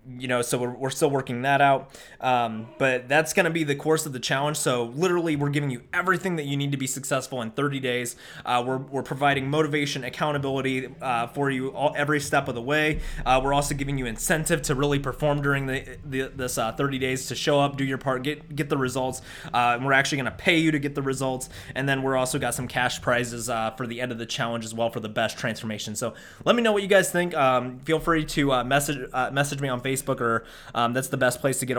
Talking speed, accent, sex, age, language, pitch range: 255 wpm, American, male, 20-39, English, 125-145 Hz